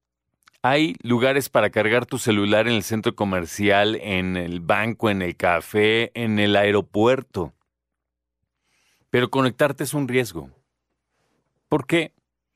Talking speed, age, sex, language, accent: 125 wpm, 40-59, male, Spanish, Mexican